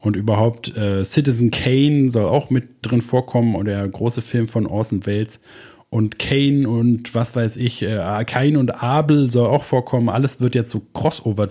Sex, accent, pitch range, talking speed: male, German, 110-130 Hz, 180 wpm